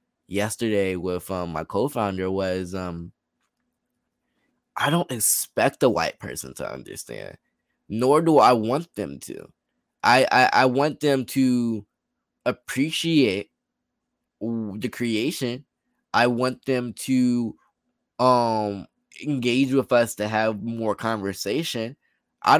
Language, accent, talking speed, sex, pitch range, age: English, American, 115 wpm, male, 105-130 Hz, 10-29